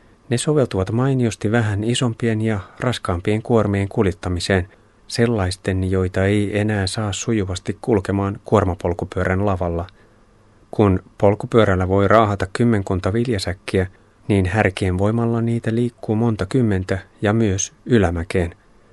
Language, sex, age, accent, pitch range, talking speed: Finnish, male, 30-49, native, 95-110 Hz, 110 wpm